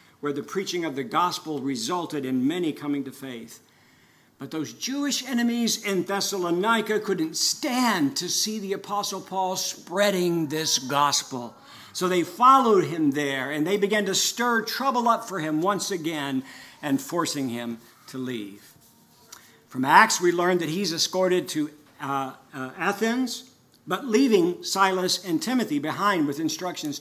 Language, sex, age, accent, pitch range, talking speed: English, male, 60-79, American, 140-205 Hz, 150 wpm